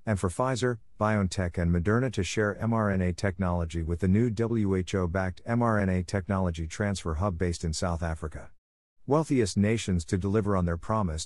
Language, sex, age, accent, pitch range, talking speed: English, male, 50-69, American, 90-110 Hz, 155 wpm